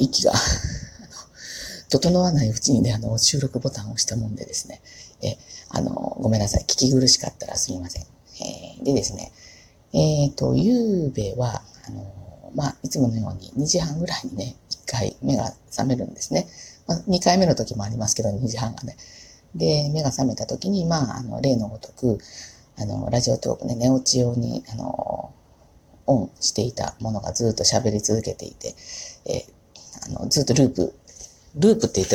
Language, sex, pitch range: Japanese, female, 110-150 Hz